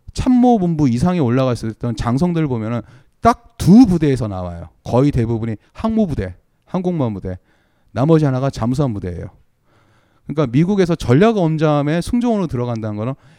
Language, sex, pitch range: Korean, male, 115-170 Hz